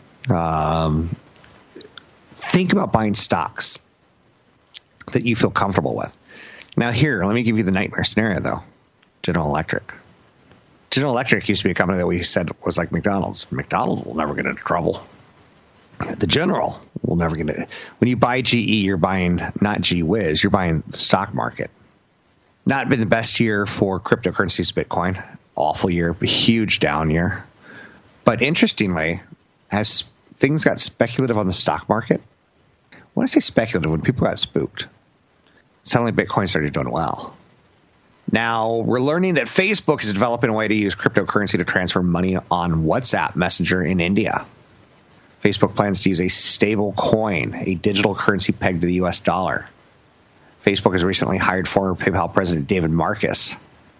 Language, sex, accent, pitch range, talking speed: English, male, American, 85-115 Hz, 155 wpm